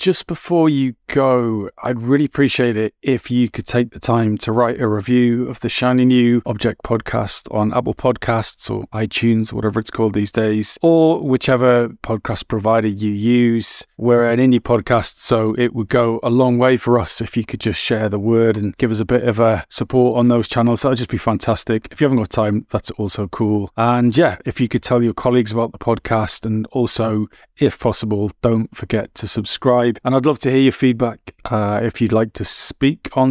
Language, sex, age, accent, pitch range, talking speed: English, male, 30-49, British, 110-125 Hz, 210 wpm